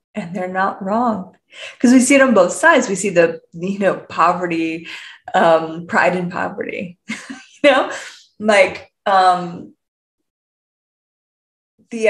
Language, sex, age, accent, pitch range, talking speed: English, female, 20-39, American, 180-240 Hz, 130 wpm